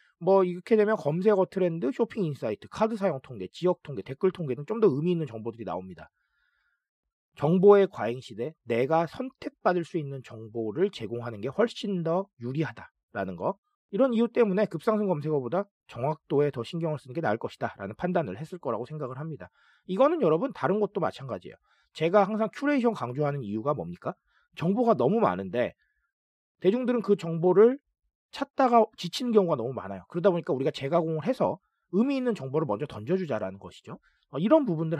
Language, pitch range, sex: Korean, 145-220 Hz, male